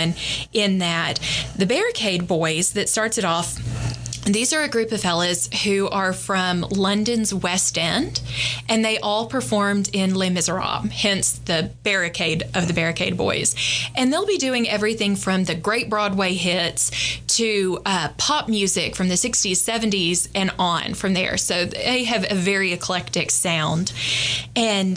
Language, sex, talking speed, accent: English, female, 160 wpm, American